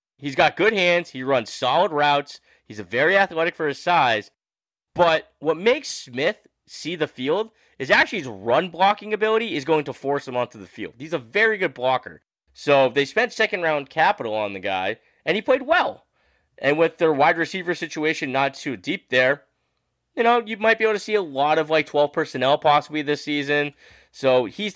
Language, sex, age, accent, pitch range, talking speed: English, male, 20-39, American, 125-165 Hz, 200 wpm